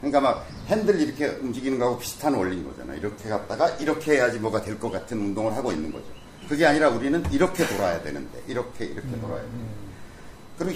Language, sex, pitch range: Korean, male, 125-210 Hz